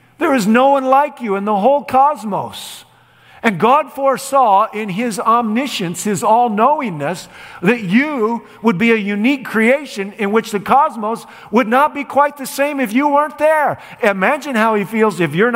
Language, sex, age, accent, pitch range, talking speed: English, male, 50-69, American, 180-235 Hz, 175 wpm